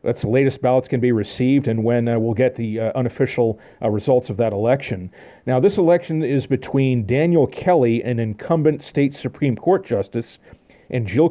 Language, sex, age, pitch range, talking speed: English, male, 40-59, 115-140 Hz, 185 wpm